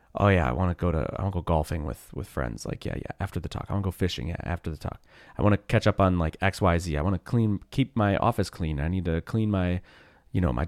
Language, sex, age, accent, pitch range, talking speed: English, male, 30-49, American, 85-120 Hz, 315 wpm